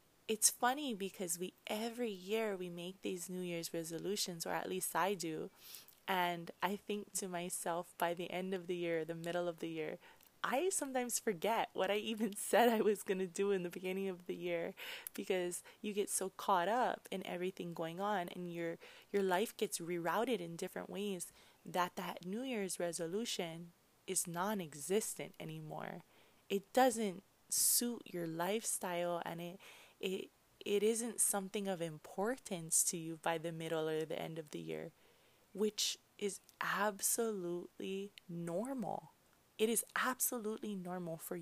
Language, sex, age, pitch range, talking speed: English, female, 20-39, 175-210 Hz, 160 wpm